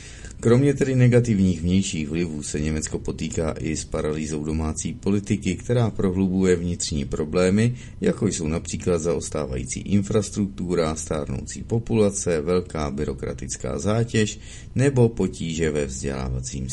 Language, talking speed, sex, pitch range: Czech, 110 wpm, male, 75-105 Hz